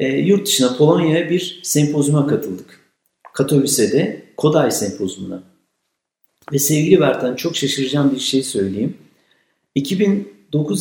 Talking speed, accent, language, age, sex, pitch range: 100 wpm, native, Turkish, 50-69, male, 140-170 Hz